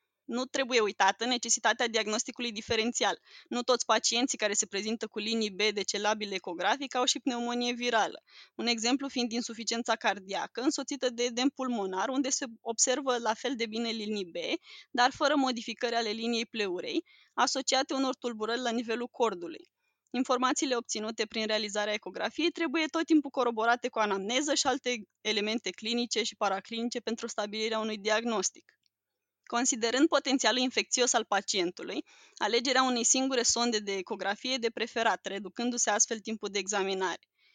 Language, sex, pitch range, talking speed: Romanian, female, 215-255 Hz, 145 wpm